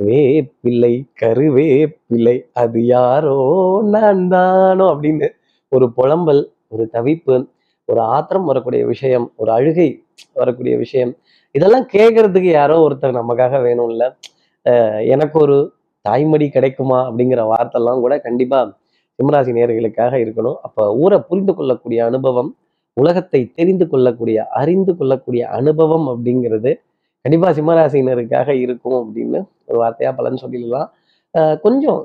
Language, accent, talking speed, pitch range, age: Tamil, native, 105 wpm, 120-155 Hz, 30-49